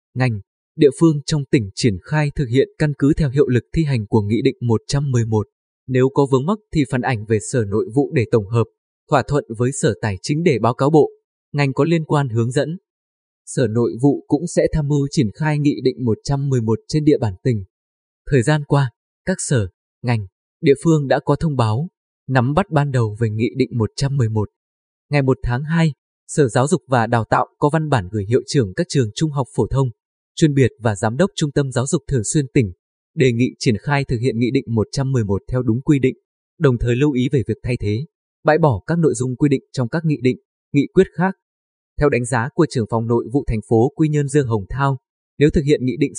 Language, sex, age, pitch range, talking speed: Vietnamese, male, 20-39, 115-150 Hz, 225 wpm